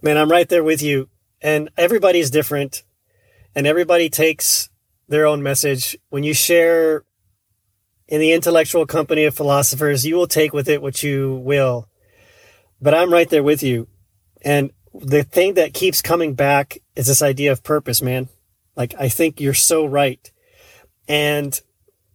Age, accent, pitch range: 30-49, American, 115-160 Hz